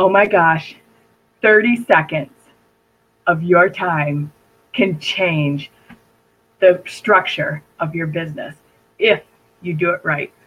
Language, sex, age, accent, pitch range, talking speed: English, female, 20-39, American, 160-200 Hz, 115 wpm